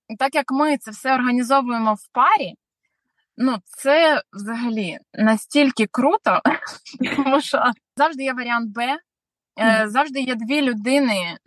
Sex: female